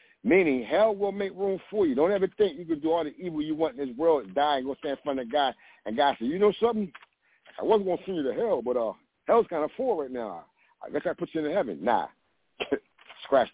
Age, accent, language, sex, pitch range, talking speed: 60-79, American, English, male, 130-205 Hz, 270 wpm